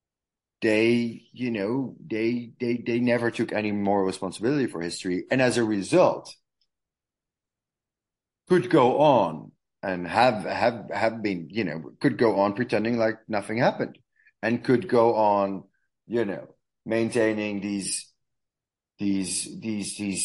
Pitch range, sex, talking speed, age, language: 95-115 Hz, male, 135 wpm, 30-49, English